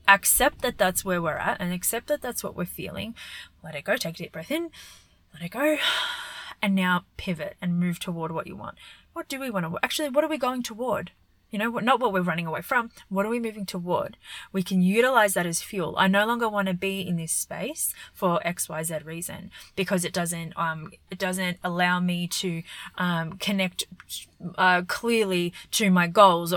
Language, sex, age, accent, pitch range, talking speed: English, female, 20-39, Australian, 180-205 Hz, 205 wpm